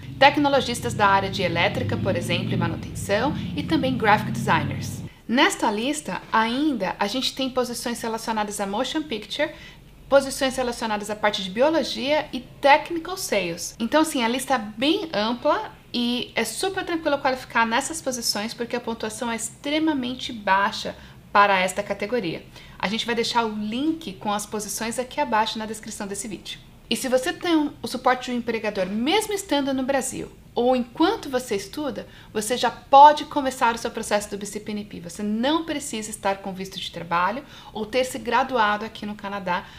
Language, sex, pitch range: Portuguese, female, 210-270 Hz